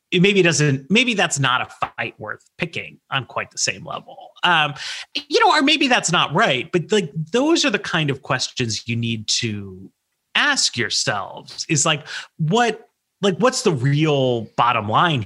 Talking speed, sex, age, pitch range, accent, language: 175 wpm, male, 30-49, 120-185 Hz, American, English